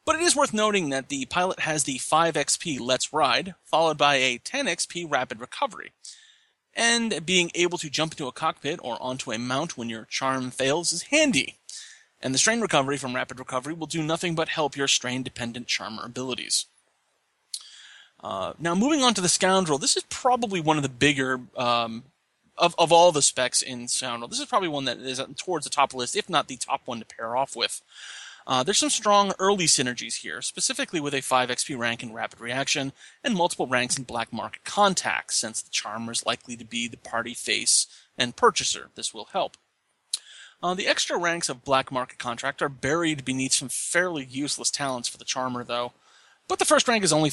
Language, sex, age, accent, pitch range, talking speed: English, male, 30-49, American, 130-185 Hz, 205 wpm